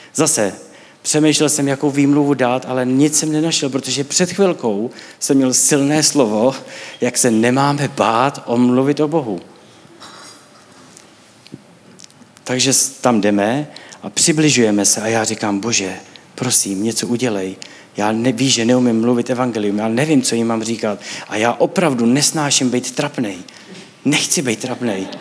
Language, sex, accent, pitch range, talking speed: Czech, male, native, 115-140 Hz, 140 wpm